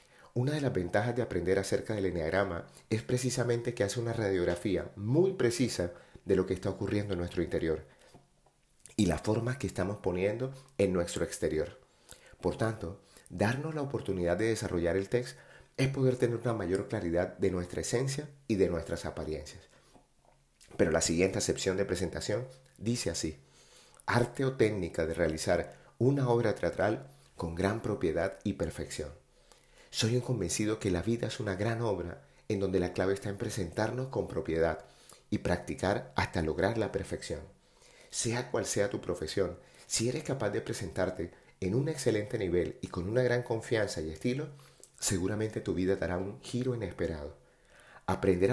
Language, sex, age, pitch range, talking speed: Spanish, male, 30-49, 90-120 Hz, 160 wpm